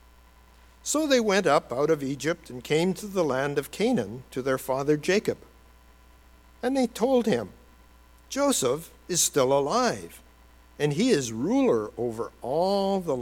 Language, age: English, 60-79